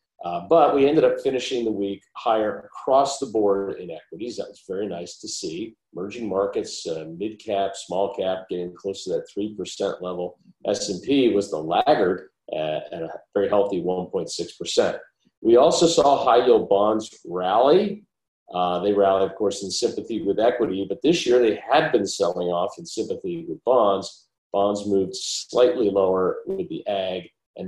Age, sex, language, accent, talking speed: 50-69, male, English, American, 165 wpm